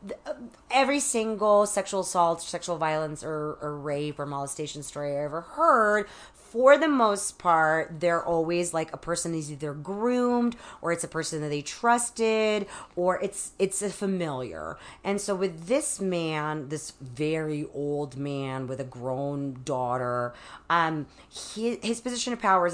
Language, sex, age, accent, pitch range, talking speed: English, female, 40-59, American, 140-195 Hz, 155 wpm